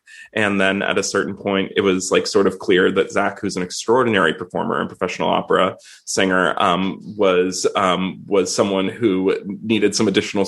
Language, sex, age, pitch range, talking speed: English, male, 20-39, 95-105 Hz, 180 wpm